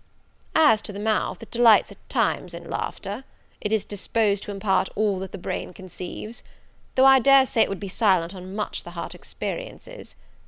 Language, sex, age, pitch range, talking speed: English, female, 30-49, 185-220 Hz, 190 wpm